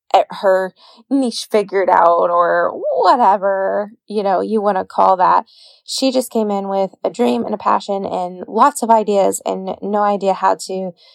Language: English